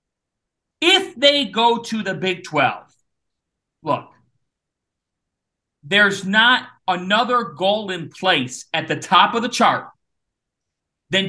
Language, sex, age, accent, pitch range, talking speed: English, male, 40-59, American, 185-260 Hz, 110 wpm